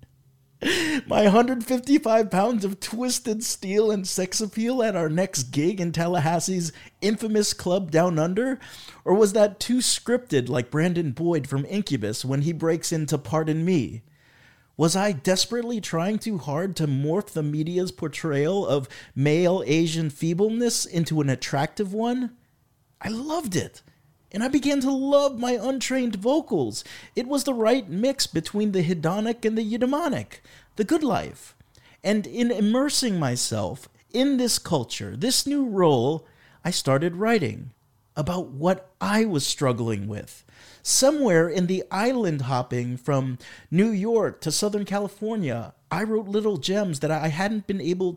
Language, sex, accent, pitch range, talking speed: English, male, American, 145-220 Hz, 145 wpm